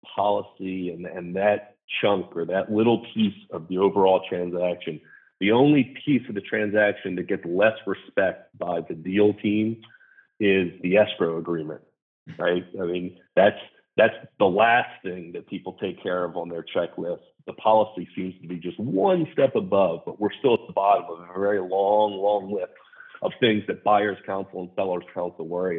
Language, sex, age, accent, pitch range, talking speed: English, male, 40-59, American, 90-110 Hz, 180 wpm